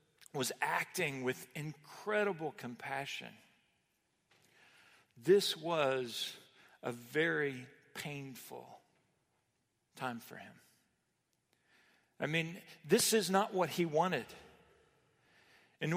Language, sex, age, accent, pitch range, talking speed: English, male, 50-69, American, 140-185 Hz, 85 wpm